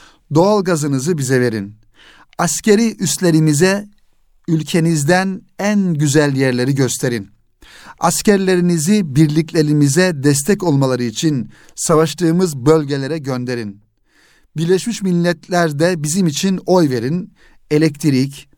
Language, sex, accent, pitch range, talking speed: Turkish, male, native, 135-180 Hz, 80 wpm